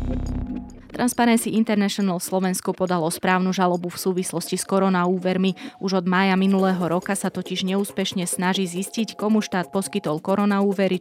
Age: 20-39